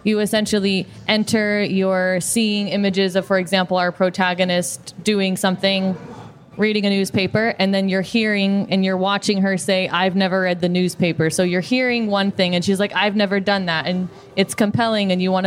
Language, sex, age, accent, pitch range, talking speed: German, female, 20-39, American, 185-205 Hz, 185 wpm